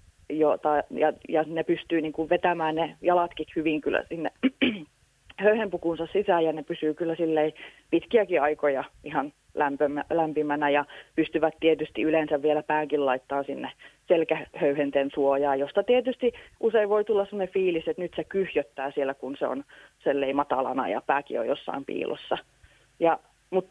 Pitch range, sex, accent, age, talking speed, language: 150-190 Hz, female, native, 30-49, 145 wpm, Finnish